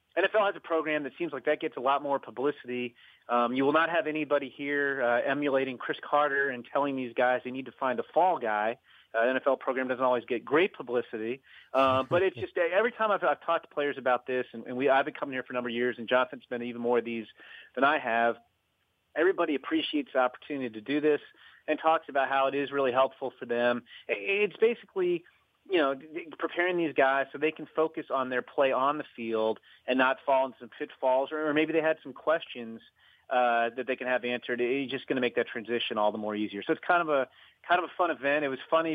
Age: 30-49